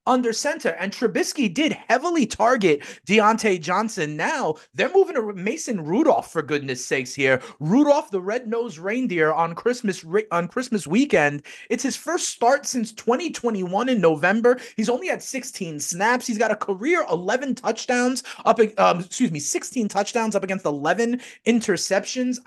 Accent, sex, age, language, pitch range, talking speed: American, male, 30-49, English, 200-265 Hz, 155 wpm